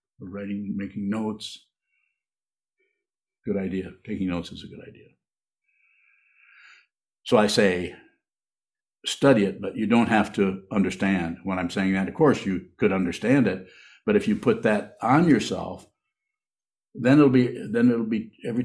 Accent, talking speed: American, 150 wpm